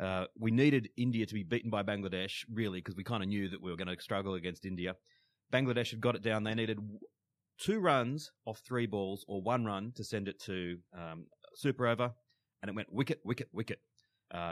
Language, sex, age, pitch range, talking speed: English, male, 30-49, 100-125 Hz, 220 wpm